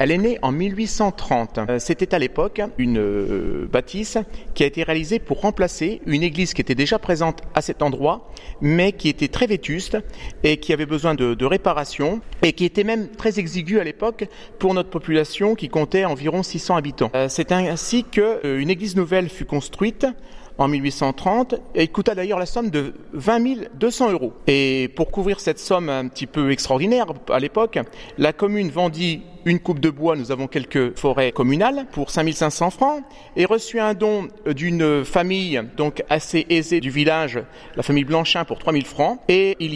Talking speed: 175 wpm